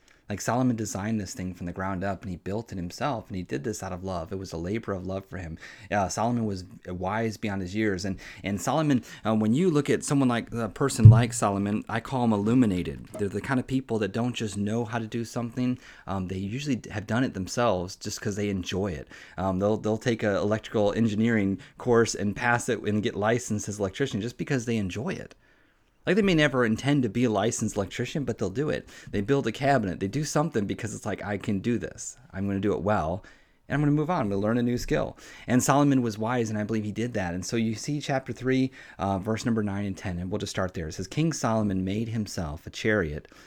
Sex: male